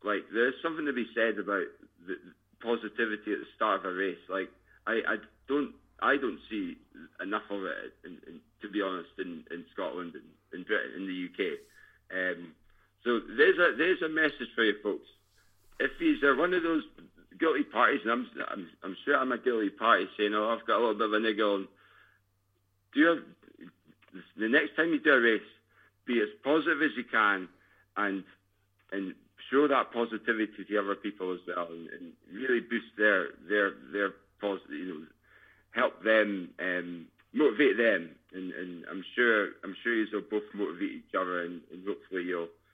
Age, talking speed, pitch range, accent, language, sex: 50-69, 190 wpm, 95-145 Hz, British, English, male